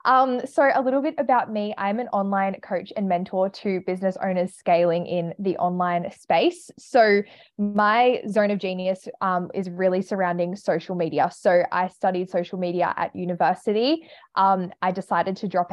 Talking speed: 170 wpm